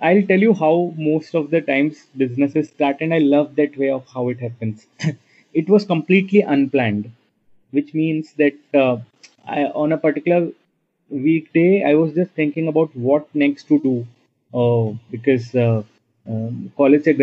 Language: English